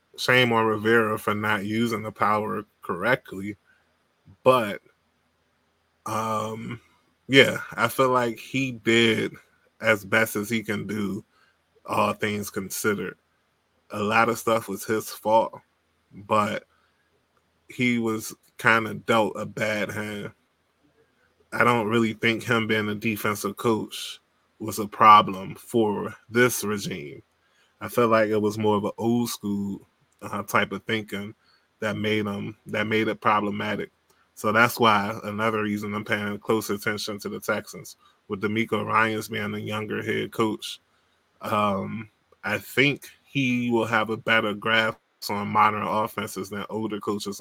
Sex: male